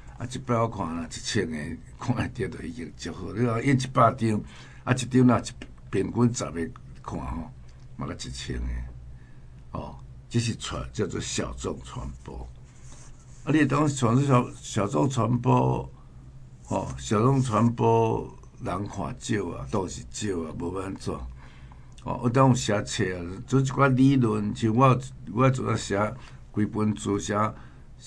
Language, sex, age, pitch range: Chinese, male, 60-79, 90-125 Hz